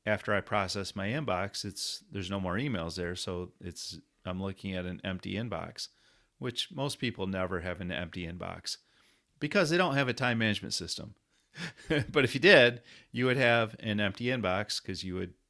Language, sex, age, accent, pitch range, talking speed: English, male, 40-59, American, 95-120 Hz, 185 wpm